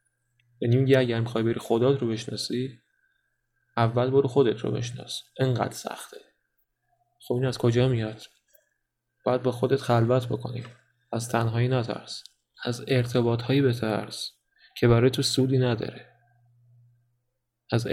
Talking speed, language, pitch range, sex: 120 wpm, Persian, 115-130 Hz, male